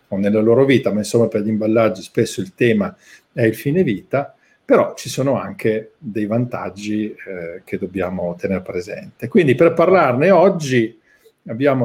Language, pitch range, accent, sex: Italian, 110-135 Hz, native, male